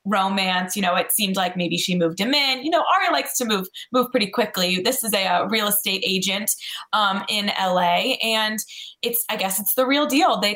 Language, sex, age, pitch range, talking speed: English, female, 20-39, 185-245 Hz, 220 wpm